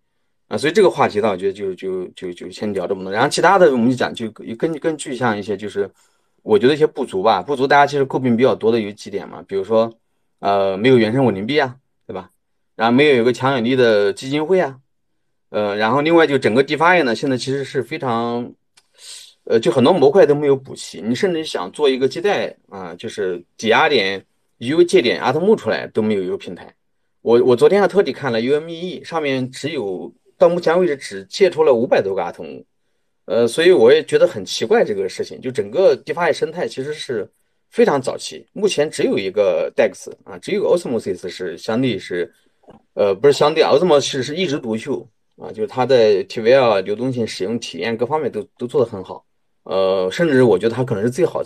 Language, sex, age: Chinese, male, 30-49